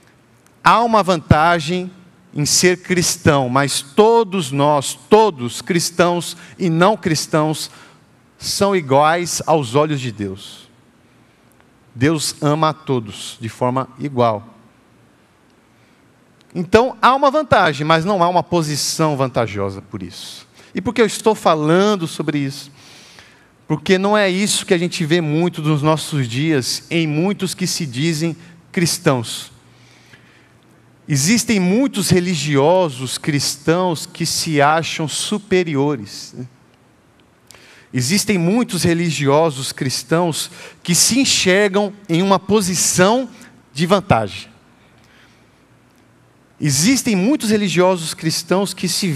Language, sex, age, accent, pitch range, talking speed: Portuguese, male, 50-69, Brazilian, 140-185 Hz, 110 wpm